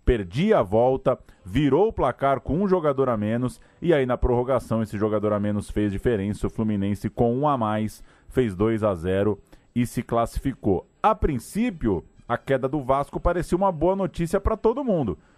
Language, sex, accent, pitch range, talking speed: Portuguese, male, Brazilian, 100-135 Hz, 185 wpm